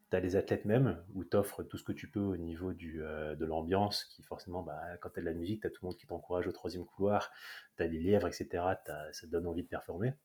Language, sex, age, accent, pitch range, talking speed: French, male, 30-49, French, 85-105 Hz, 265 wpm